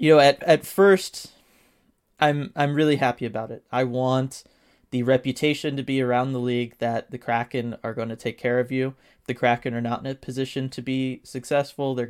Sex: male